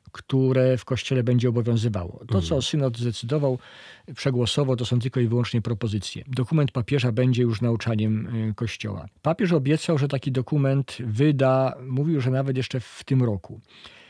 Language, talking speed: Polish, 150 wpm